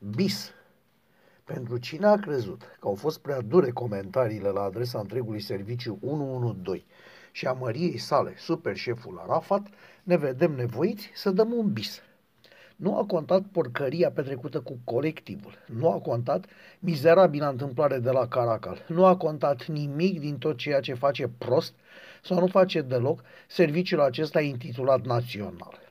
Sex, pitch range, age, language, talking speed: male, 130-180 Hz, 50-69, Romanian, 145 wpm